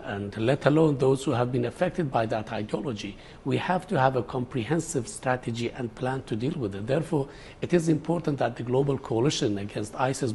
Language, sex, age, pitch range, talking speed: English, male, 60-79, 125-155 Hz, 195 wpm